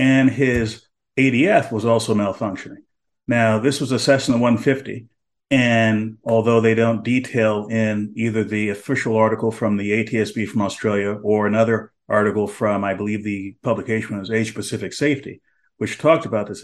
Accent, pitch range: American, 105-135 Hz